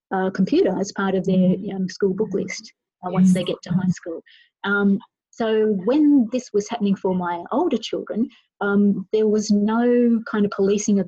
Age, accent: 30-49, Australian